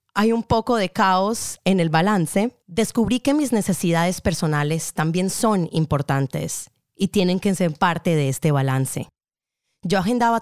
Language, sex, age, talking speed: English, female, 20-39, 150 wpm